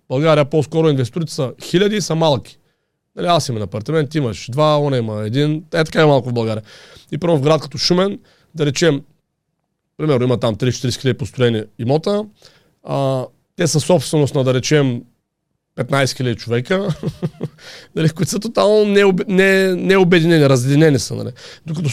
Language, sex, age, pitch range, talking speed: Bulgarian, male, 40-59, 130-160 Hz, 160 wpm